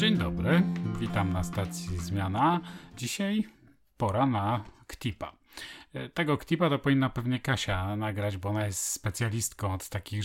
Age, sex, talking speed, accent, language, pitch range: 40-59, male, 135 wpm, native, Polish, 105-135 Hz